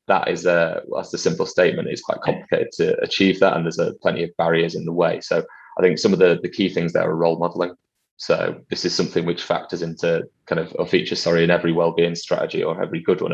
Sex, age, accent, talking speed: male, 20-39, British, 245 wpm